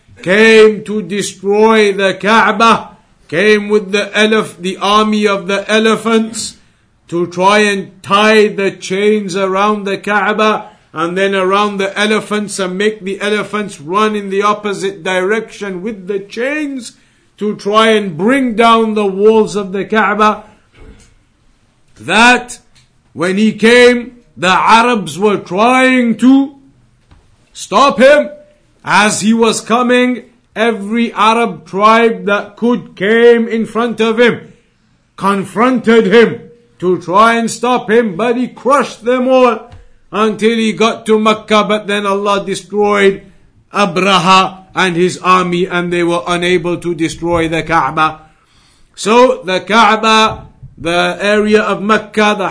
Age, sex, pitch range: 50-69, male, 190-225 Hz